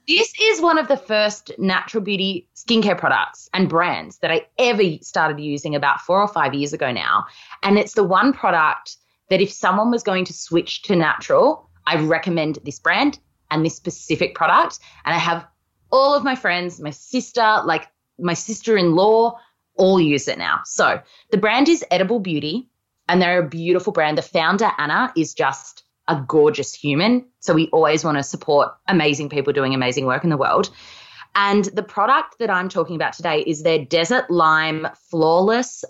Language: English